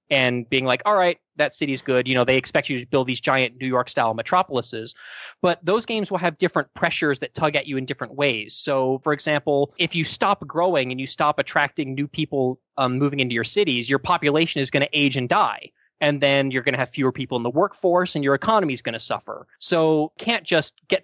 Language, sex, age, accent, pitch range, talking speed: English, male, 20-39, American, 130-155 Hz, 235 wpm